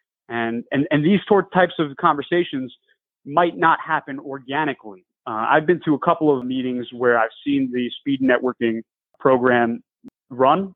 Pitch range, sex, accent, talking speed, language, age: 120-155 Hz, male, American, 150 wpm, English, 30-49